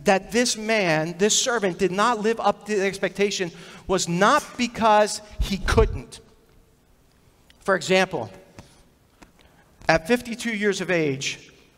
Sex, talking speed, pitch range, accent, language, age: male, 120 wpm, 175-245 Hz, American, English, 40-59